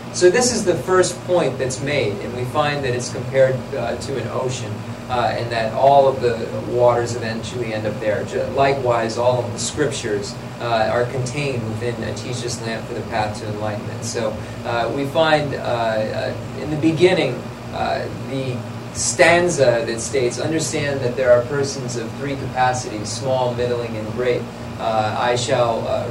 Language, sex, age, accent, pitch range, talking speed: English, male, 30-49, American, 115-135 Hz, 175 wpm